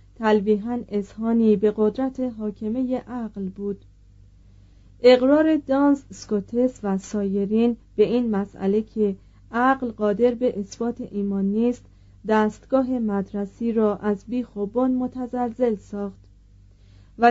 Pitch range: 200-245 Hz